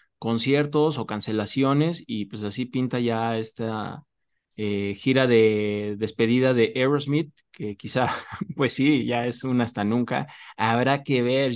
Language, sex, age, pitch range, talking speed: Spanish, male, 20-39, 110-135 Hz, 140 wpm